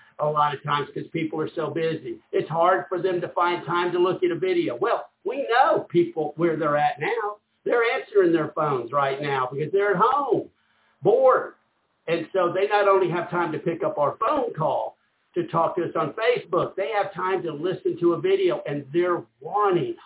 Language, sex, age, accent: English, male, 60-79, American